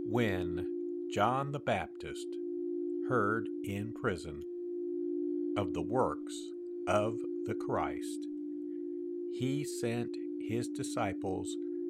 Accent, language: American, English